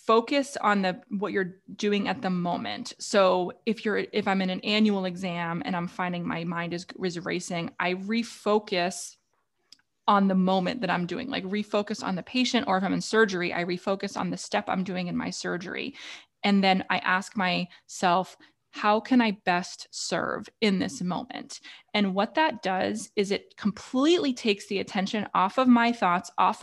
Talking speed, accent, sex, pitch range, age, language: 185 wpm, American, female, 185-225 Hz, 20-39, English